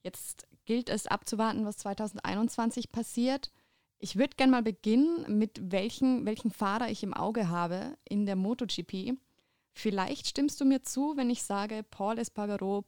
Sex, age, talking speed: female, 20-39, 160 wpm